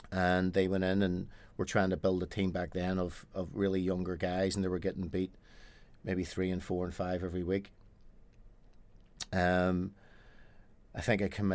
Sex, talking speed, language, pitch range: male, 185 wpm, English, 90-100 Hz